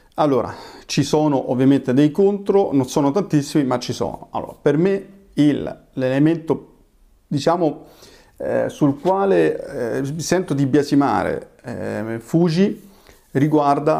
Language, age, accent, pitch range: Italian, 40-59, native, 125-150 Hz